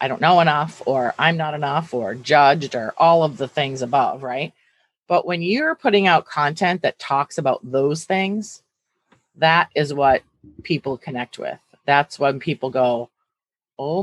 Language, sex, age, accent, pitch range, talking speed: English, female, 30-49, American, 130-165 Hz, 165 wpm